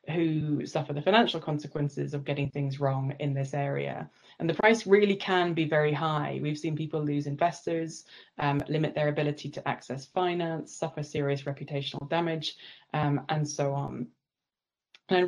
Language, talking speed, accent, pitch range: English, 160 wpm, British, 150-170 Hz